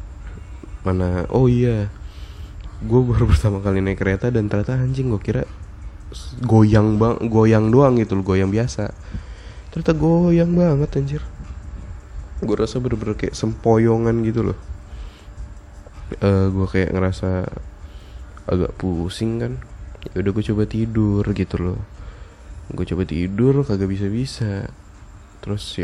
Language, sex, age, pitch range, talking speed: Indonesian, male, 20-39, 90-115 Hz, 120 wpm